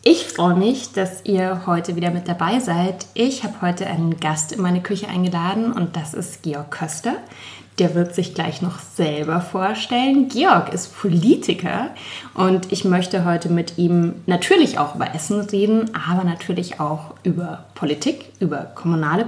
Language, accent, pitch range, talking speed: German, German, 180-235 Hz, 160 wpm